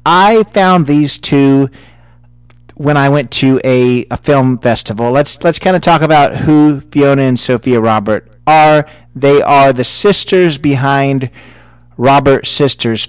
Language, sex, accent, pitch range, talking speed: English, male, American, 120-145 Hz, 140 wpm